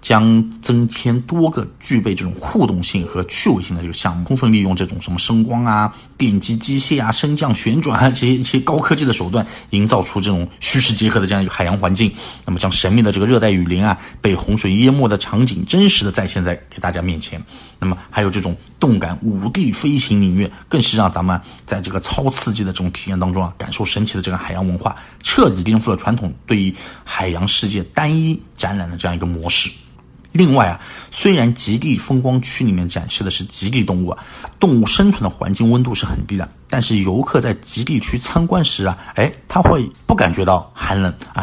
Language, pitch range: Chinese, 95-120 Hz